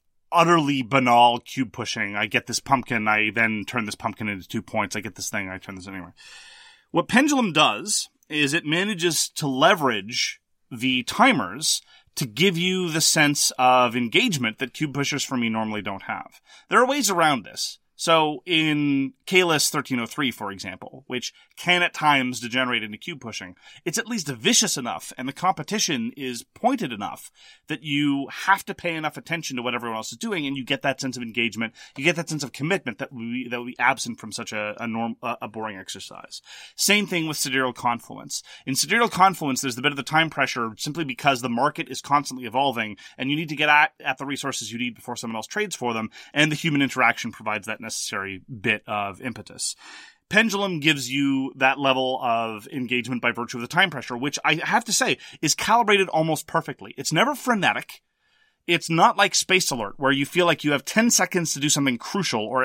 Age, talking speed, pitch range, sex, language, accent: 30-49, 205 wpm, 120-165 Hz, male, English, American